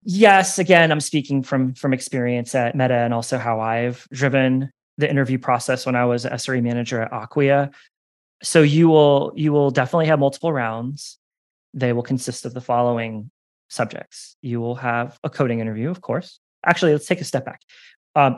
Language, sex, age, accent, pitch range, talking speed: English, male, 20-39, American, 115-140 Hz, 185 wpm